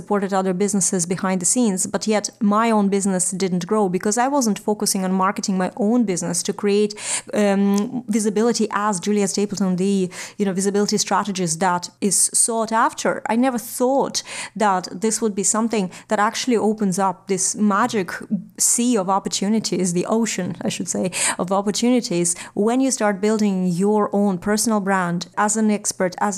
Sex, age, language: female, 30-49, English